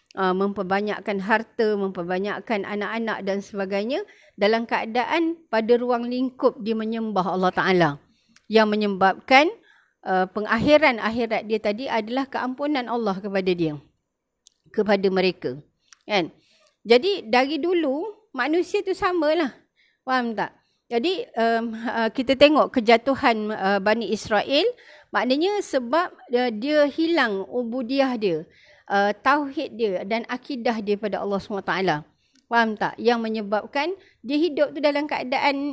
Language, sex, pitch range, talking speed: Malay, female, 205-270 Hz, 125 wpm